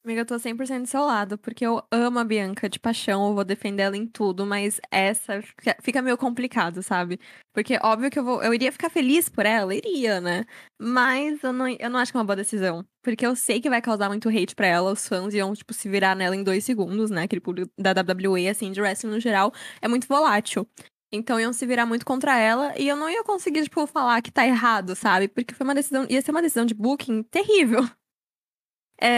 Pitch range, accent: 210-260 Hz, Brazilian